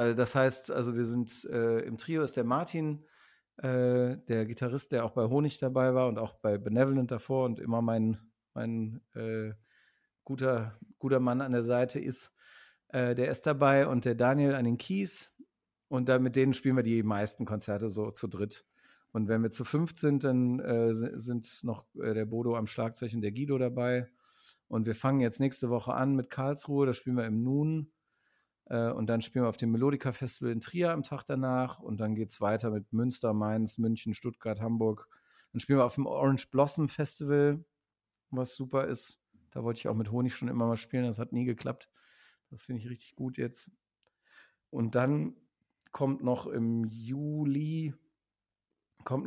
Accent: German